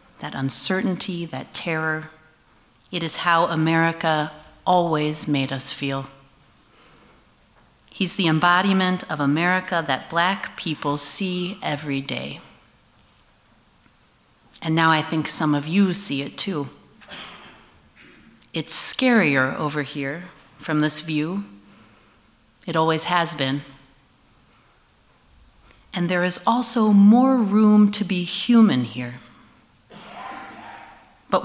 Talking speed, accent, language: 105 wpm, American, English